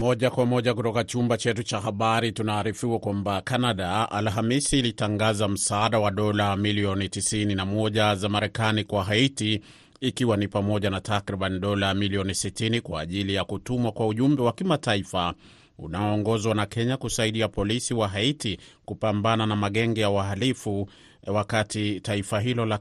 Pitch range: 100-115 Hz